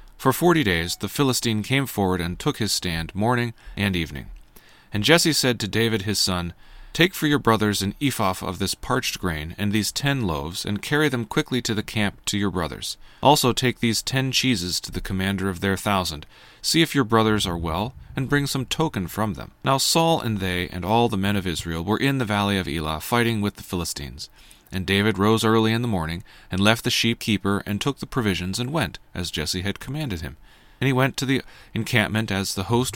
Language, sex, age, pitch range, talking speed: English, male, 30-49, 95-125 Hz, 215 wpm